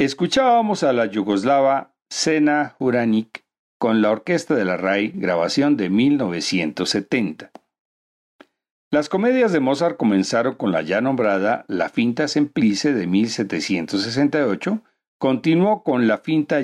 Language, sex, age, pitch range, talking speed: Spanish, male, 50-69, 105-155 Hz, 120 wpm